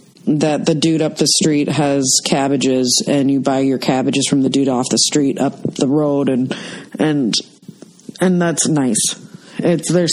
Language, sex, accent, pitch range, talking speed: English, female, American, 155-195 Hz, 170 wpm